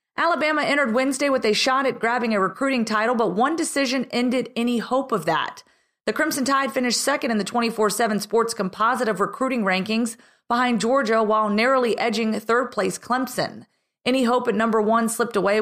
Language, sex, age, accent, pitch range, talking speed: English, female, 30-49, American, 215-260 Hz, 175 wpm